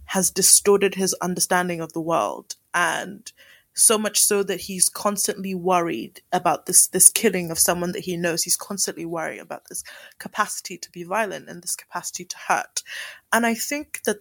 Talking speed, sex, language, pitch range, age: 175 wpm, female, English, 180-215 Hz, 20-39